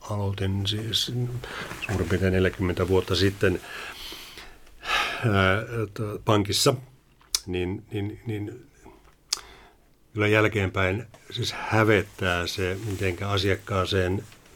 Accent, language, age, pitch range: native, Finnish, 60-79, 95-110 Hz